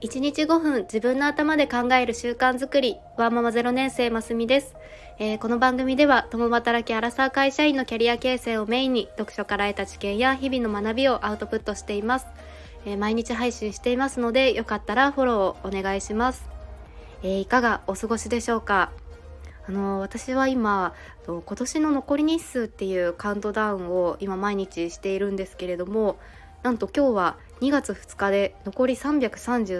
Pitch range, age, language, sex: 200-255 Hz, 20-39, Japanese, female